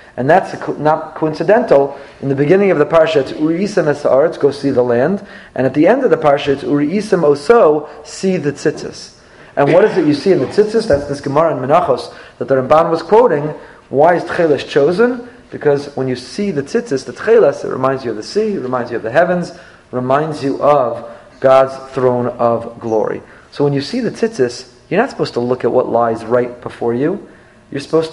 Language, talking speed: English, 220 wpm